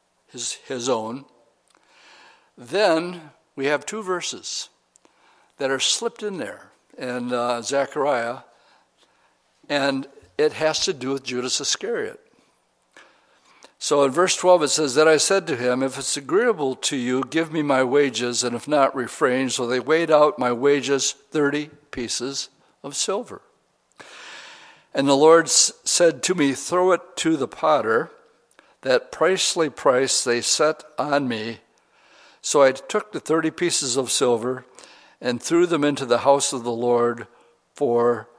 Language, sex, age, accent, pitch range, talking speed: English, male, 60-79, American, 125-155 Hz, 145 wpm